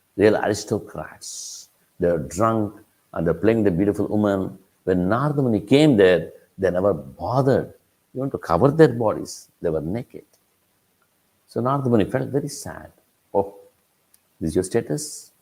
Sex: male